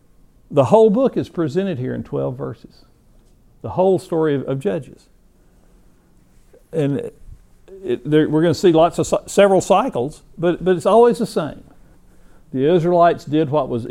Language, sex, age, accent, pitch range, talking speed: English, male, 60-79, American, 120-160 Hz, 150 wpm